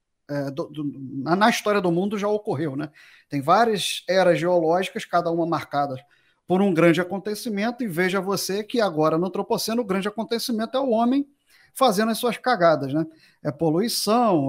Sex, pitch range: male, 150-190 Hz